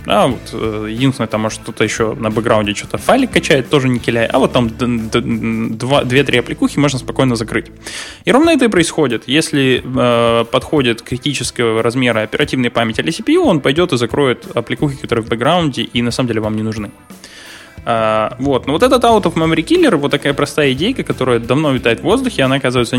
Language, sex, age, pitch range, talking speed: Russian, male, 10-29, 120-150 Hz, 185 wpm